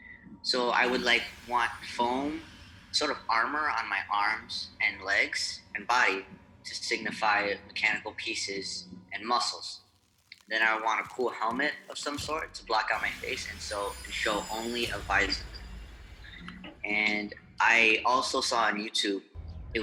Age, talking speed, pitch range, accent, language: 20-39, 150 wpm, 90-110 Hz, American, English